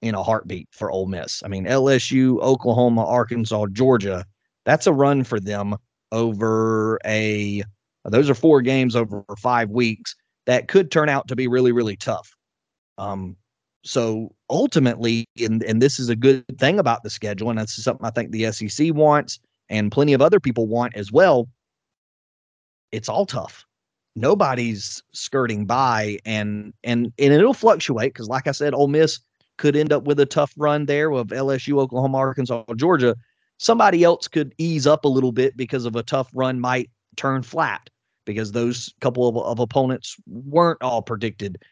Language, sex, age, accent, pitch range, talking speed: English, male, 30-49, American, 110-135 Hz, 170 wpm